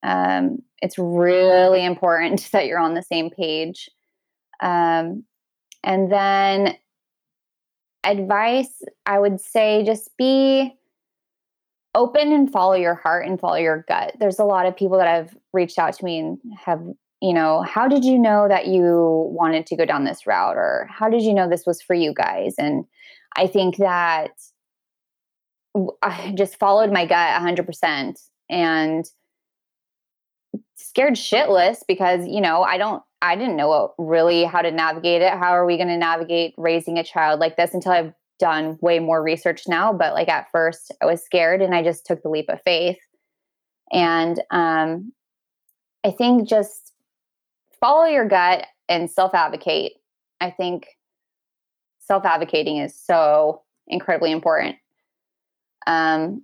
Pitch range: 165-200 Hz